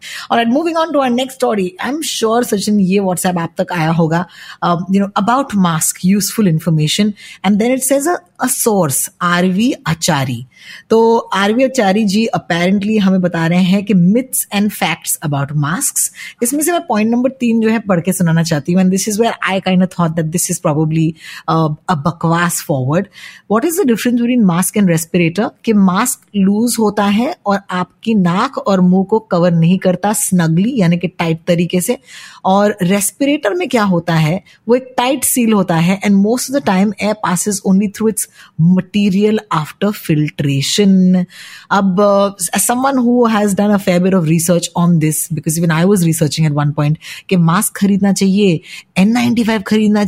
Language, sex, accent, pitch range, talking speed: Hindi, female, native, 175-225 Hz, 165 wpm